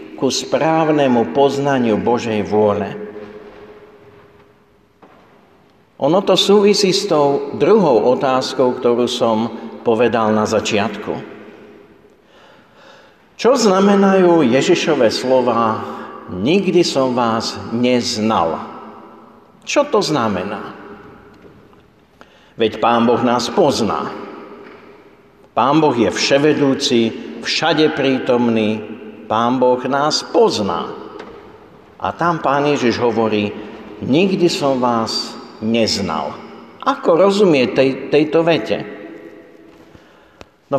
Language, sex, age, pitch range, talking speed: Slovak, male, 50-69, 110-155 Hz, 85 wpm